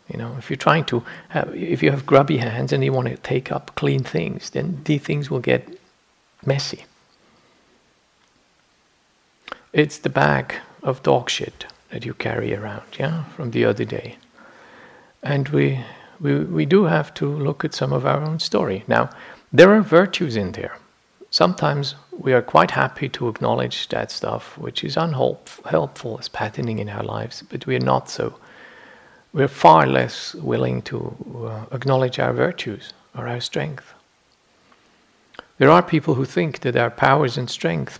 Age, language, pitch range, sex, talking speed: 50-69, English, 115-155 Hz, male, 165 wpm